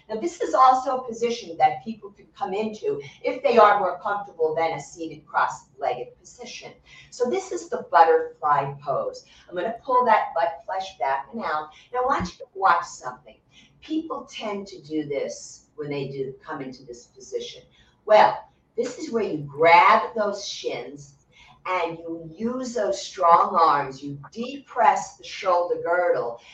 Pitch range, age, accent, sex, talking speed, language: 155-230 Hz, 50-69, American, female, 170 wpm, English